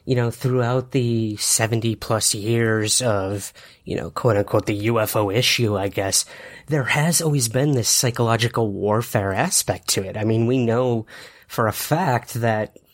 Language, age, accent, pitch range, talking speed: English, 30-49, American, 115-140 Hz, 155 wpm